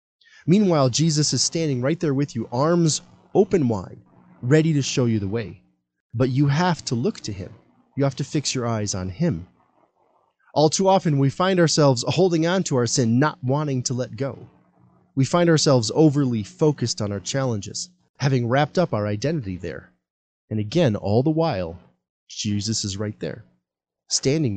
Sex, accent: male, American